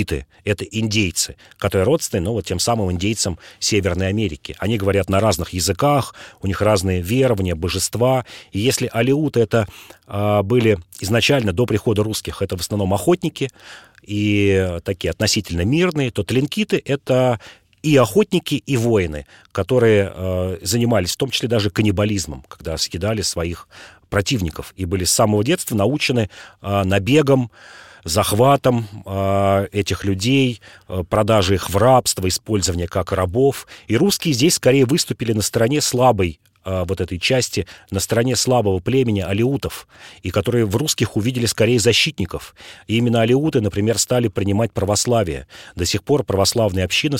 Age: 40-59